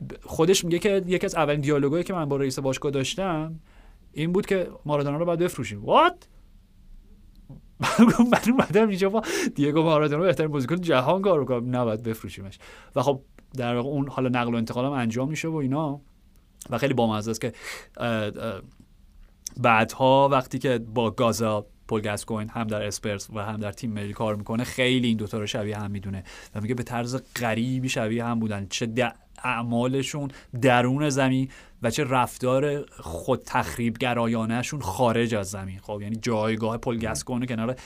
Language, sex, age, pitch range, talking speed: Persian, male, 30-49, 110-155 Hz, 165 wpm